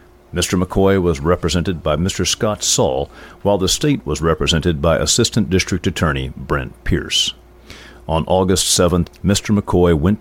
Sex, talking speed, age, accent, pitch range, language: male, 145 wpm, 50-69, American, 80-100 Hz, English